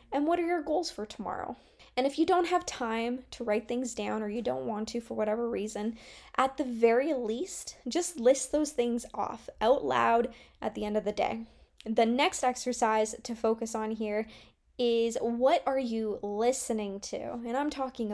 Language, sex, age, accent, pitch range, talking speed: English, female, 10-29, American, 215-255 Hz, 190 wpm